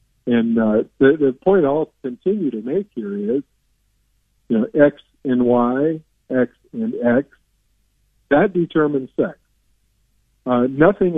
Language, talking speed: English, 130 wpm